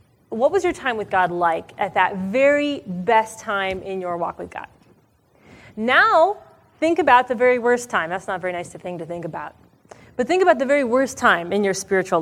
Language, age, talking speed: English, 30-49, 210 wpm